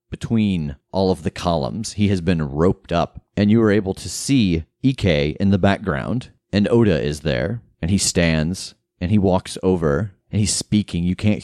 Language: English